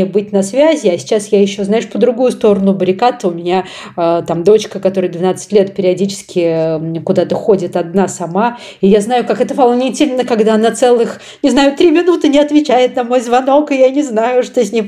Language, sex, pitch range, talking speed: Russian, female, 180-230 Hz, 200 wpm